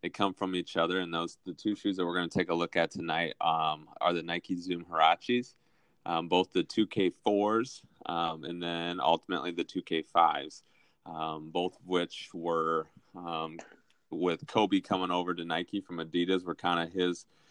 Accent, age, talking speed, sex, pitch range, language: American, 20-39, 180 wpm, male, 85-90 Hz, English